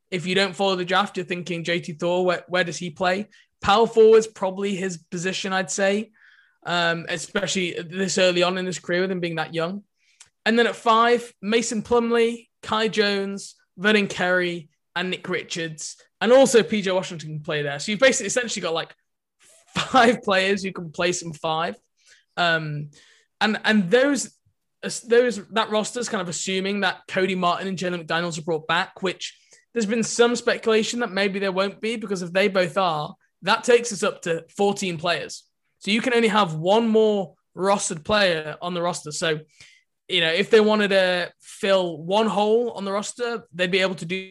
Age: 20-39